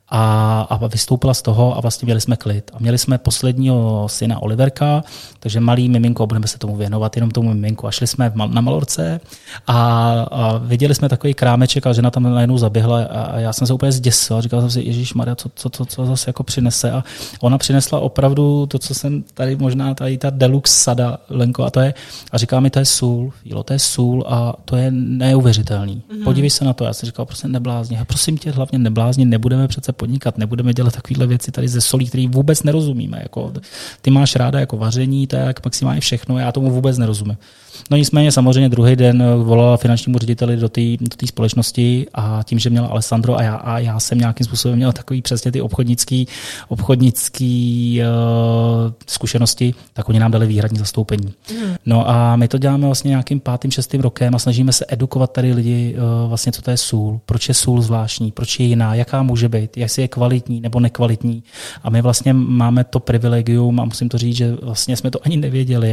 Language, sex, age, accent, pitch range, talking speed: Czech, male, 20-39, native, 115-130 Hz, 195 wpm